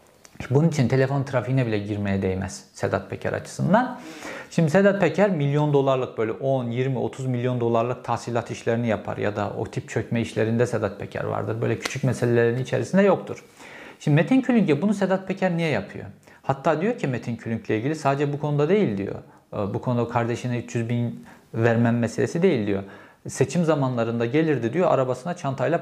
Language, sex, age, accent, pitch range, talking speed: Turkish, male, 50-69, native, 115-150 Hz, 165 wpm